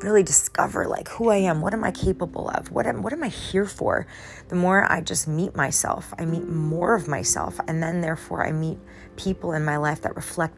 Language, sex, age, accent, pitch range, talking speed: English, female, 30-49, American, 140-180 Hz, 225 wpm